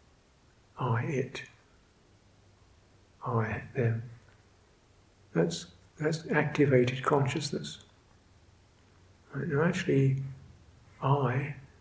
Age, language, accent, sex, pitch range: 60-79, English, British, male, 100-140 Hz